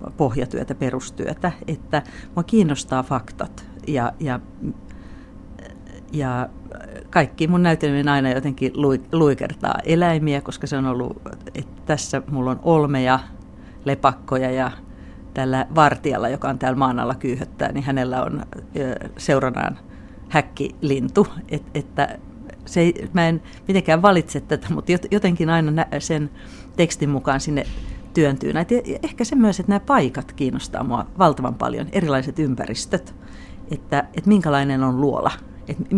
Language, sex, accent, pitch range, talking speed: Finnish, female, native, 135-175 Hz, 130 wpm